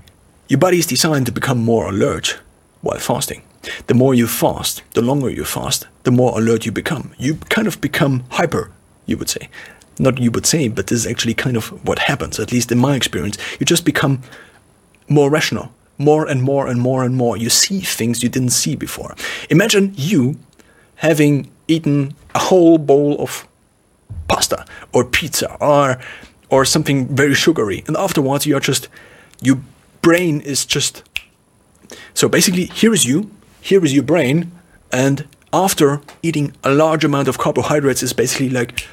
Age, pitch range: 40-59, 125-160 Hz